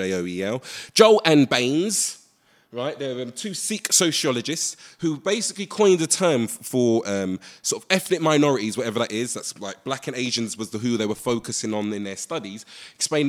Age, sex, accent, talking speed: 20-39, male, British, 180 wpm